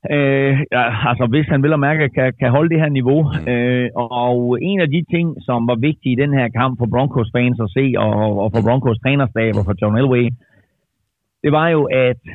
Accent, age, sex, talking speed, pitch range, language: native, 30-49, male, 225 wpm, 110-135 Hz, Danish